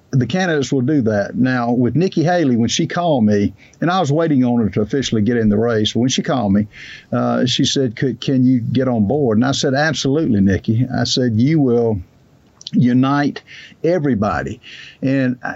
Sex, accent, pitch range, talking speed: male, American, 115-140 Hz, 195 wpm